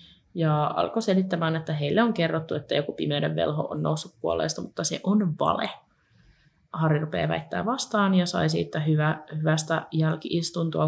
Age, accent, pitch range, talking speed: 20-39, native, 155-180 Hz, 155 wpm